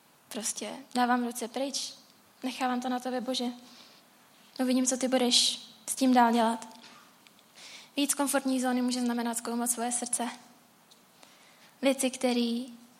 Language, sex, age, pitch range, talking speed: Czech, female, 10-29, 235-255 Hz, 135 wpm